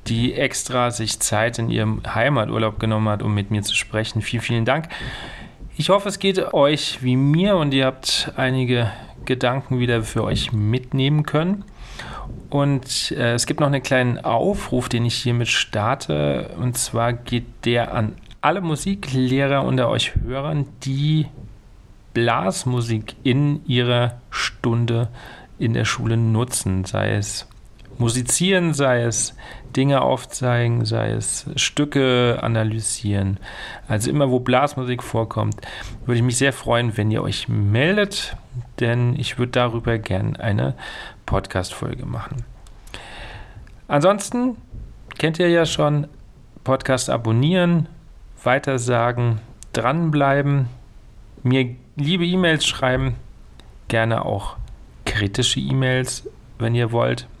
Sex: male